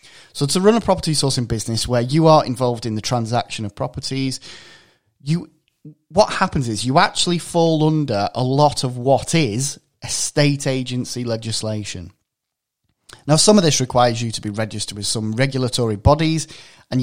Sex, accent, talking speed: male, British, 160 wpm